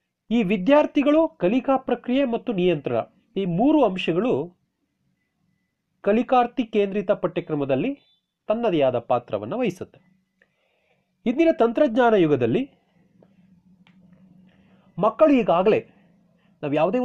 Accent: native